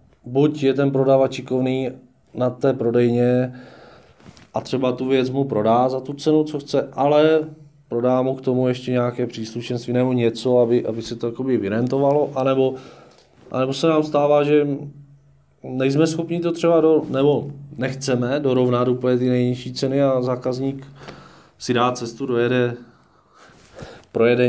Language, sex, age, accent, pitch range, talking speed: Czech, male, 20-39, native, 115-135 Hz, 140 wpm